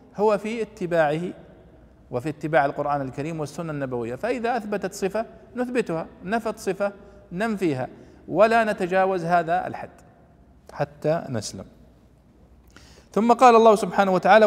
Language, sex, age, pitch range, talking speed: Arabic, male, 40-59, 150-210 Hz, 110 wpm